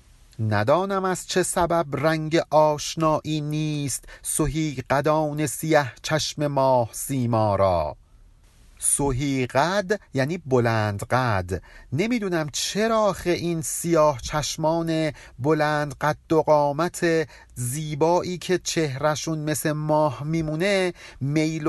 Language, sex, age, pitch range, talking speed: Persian, male, 50-69, 135-175 Hz, 95 wpm